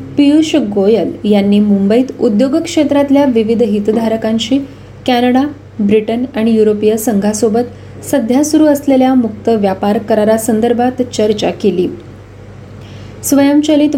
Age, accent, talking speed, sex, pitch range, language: 20-39, native, 65 wpm, female, 210-265 Hz, Marathi